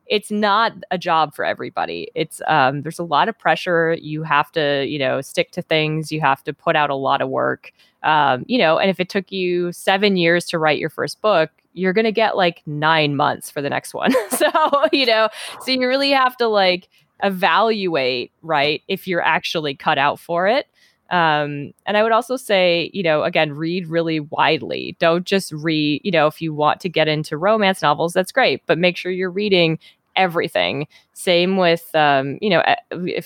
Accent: American